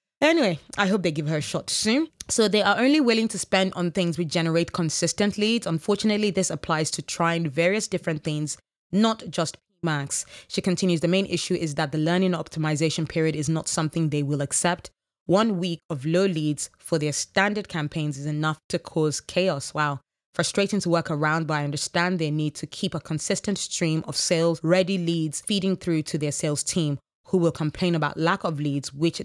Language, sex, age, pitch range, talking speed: English, female, 20-39, 155-190 Hz, 200 wpm